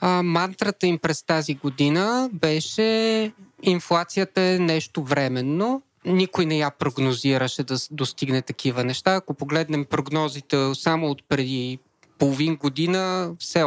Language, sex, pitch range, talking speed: Bulgarian, male, 145-200 Hz, 125 wpm